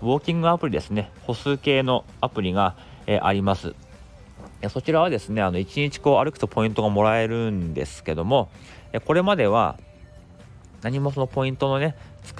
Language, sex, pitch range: Japanese, male, 95-130 Hz